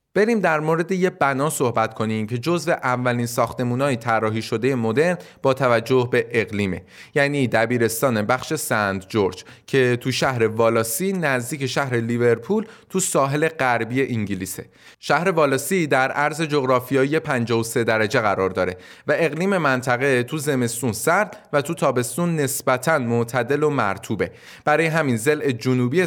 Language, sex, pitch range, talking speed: Persian, male, 120-155 Hz, 140 wpm